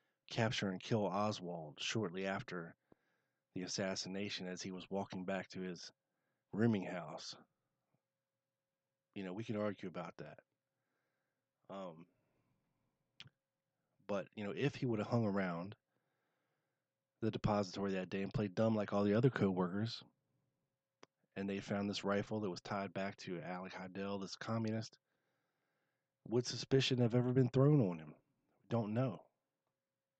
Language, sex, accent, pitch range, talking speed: English, male, American, 100-115 Hz, 140 wpm